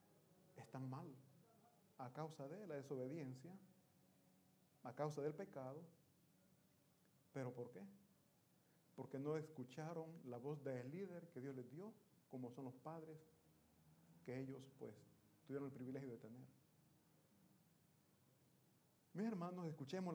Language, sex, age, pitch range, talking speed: Italian, male, 50-69, 135-180 Hz, 120 wpm